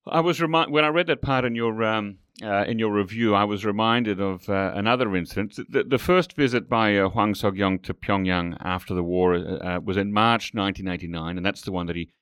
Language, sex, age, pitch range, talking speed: English, male, 40-59, 95-110 Hz, 230 wpm